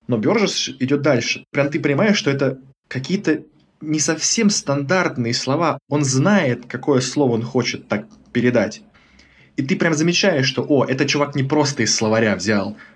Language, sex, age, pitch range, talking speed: Russian, male, 20-39, 115-140 Hz, 155 wpm